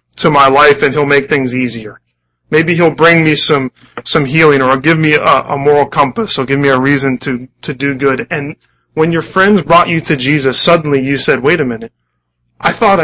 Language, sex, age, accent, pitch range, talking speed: English, male, 20-39, American, 115-150 Hz, 220 wpm